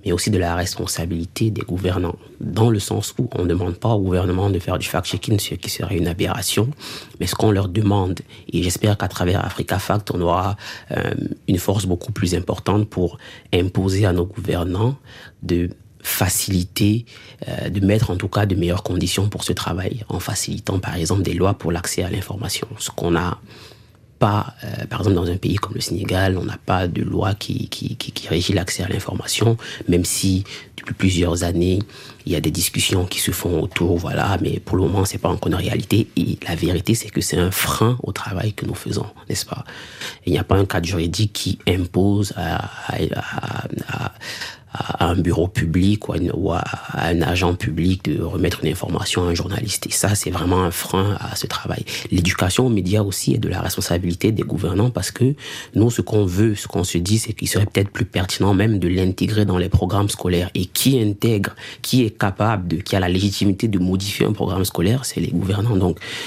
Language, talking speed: French, 205 wpm